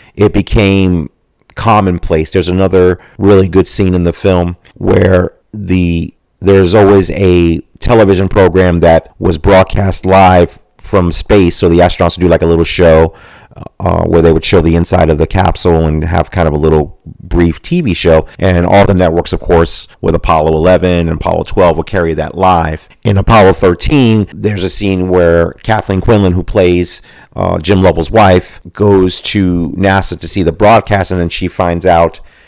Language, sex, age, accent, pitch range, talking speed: English, male, 40-59, American, 80-95 Hz, 175 wpm